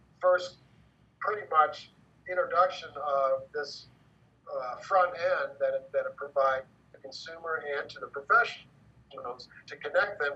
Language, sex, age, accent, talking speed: English, male, 50-69, American, 125 wpm